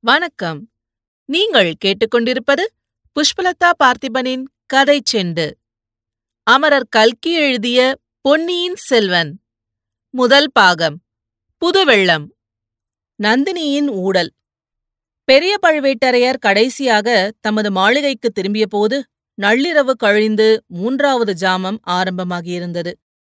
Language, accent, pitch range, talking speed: Tamil, native, 195-255 Hz, 70 wpm